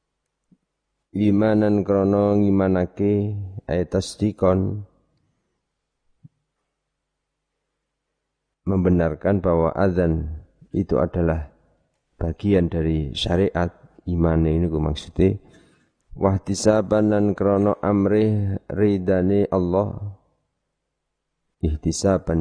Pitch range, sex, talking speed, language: 80-100 Hz, male, 55 wpm, Indonesian